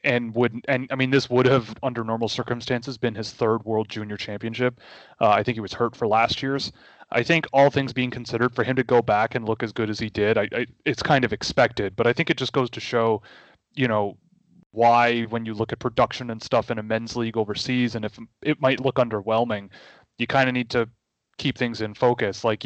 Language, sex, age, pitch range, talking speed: English, male, 30-49, 110-125 Hz, 235 wpm